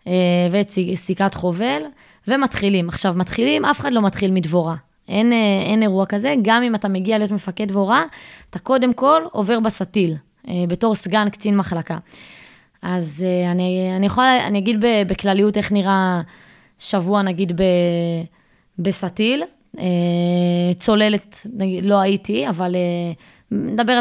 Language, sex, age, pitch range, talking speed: Hebrew, female, 20-39, 185-220 Hz, 120 wpm